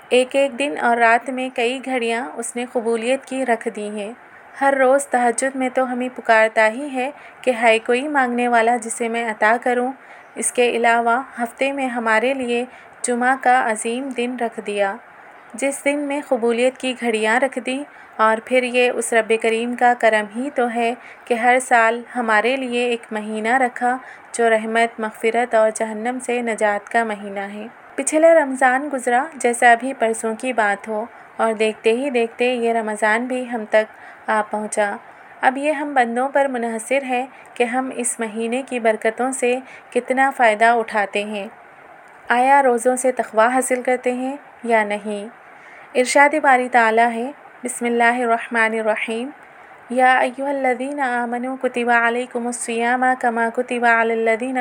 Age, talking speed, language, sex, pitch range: 30-49, 165 wpm, Urdu, female, 225-255 Hz